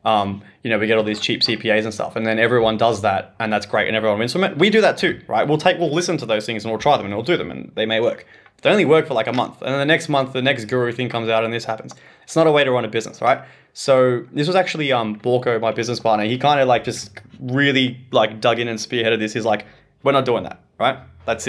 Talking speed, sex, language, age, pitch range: 305 wpm, male, English, 20-39, 115-145 Hz